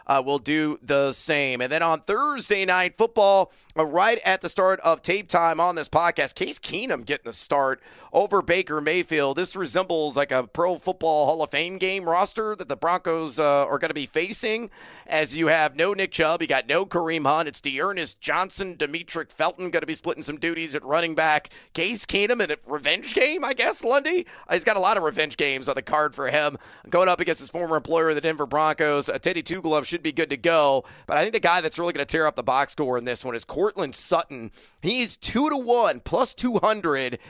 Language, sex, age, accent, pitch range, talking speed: English, male, 40-59, American, 150-185 Hz, 225 wpm